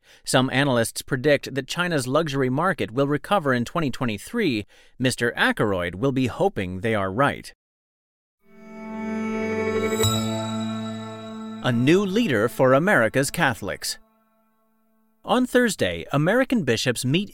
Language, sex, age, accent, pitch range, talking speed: English, male, 40-59, American, 120-185 Hz, 105 wpm